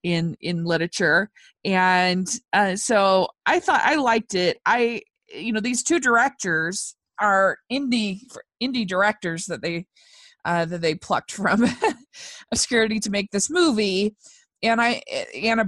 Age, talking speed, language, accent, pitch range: 20-39, 140 wpm, English, American, 190-260 Hz